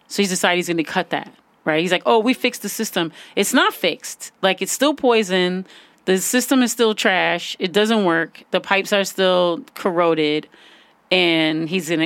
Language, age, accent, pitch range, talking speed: English, 30-49, American, 165-200 Hz, 195 wpm